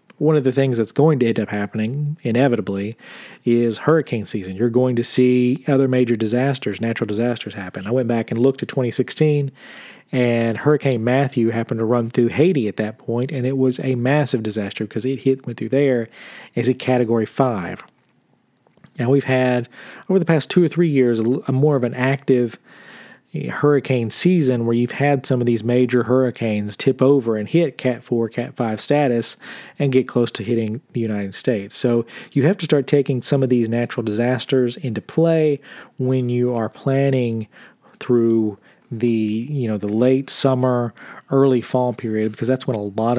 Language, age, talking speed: English, 40-59, 185 wpm